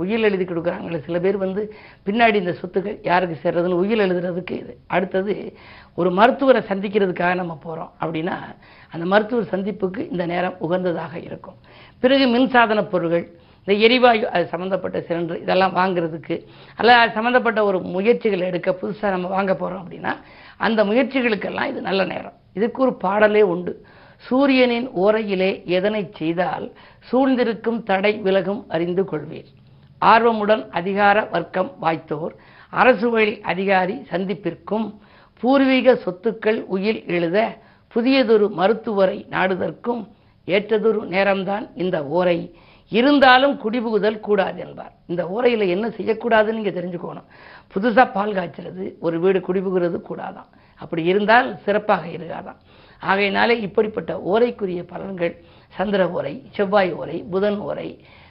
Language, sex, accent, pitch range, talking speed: Tamil, female, native, 180-225 Hz, 115 wpm